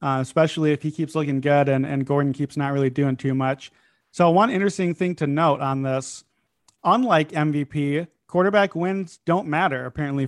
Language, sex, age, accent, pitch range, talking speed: English, male, 30-49, American, 145-175 Hz, 180 wpm